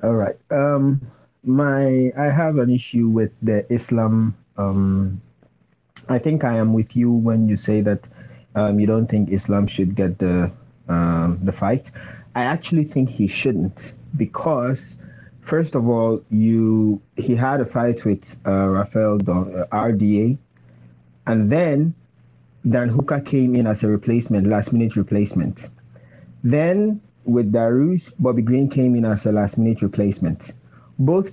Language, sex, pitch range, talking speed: English, male, 105-140 Hz, 140 wpm